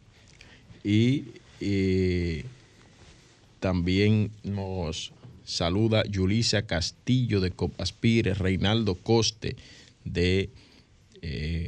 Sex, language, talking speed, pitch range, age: male, Spanish, 65 wpm, 95-115 Hz, 30-49